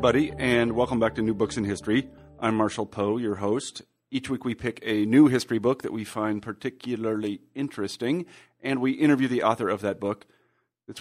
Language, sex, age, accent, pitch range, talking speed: English, male, 30-49, American, 105-125 Hz, 195 wpm